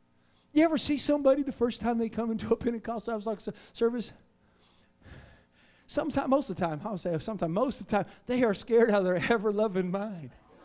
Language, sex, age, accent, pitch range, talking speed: English, male, 40-59, American, 205-310 Hz, 195 wpm